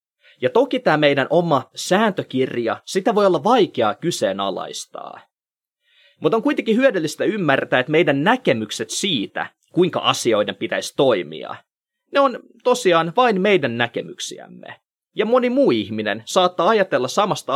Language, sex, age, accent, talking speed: Finnish, male, 20-39, native, 125 wpm